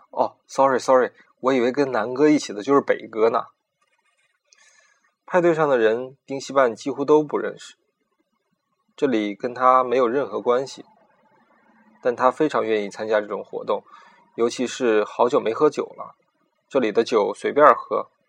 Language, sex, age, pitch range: Chinese, male, 20-39, 120-180 Hz